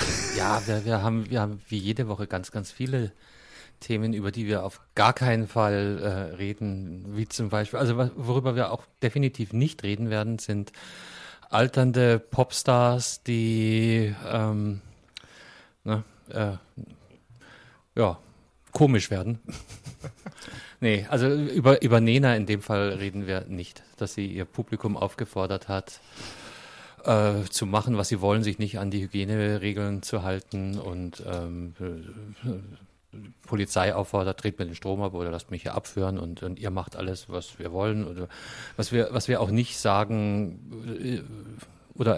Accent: German